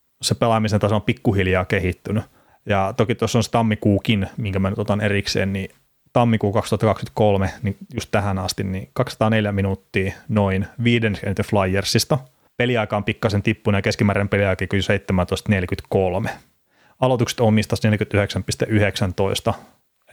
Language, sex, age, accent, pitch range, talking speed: Finnish, male, 30-49, native, 100-115 Hz, 120 wpm